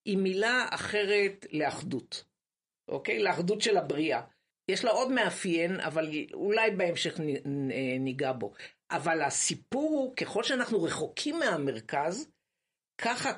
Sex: female